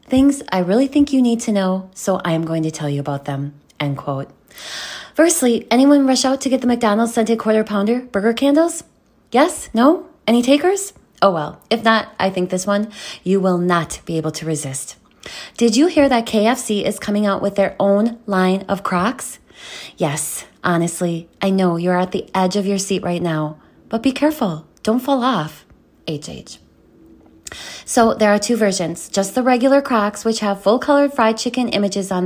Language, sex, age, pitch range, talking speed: English, female, 20-39, 180-255 Hz, 190 wpm